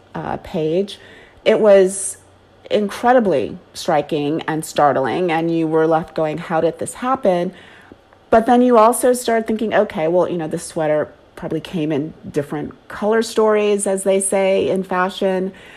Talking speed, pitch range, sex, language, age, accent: 150 wpm, 165-205 Hz, female, English, 30-49, American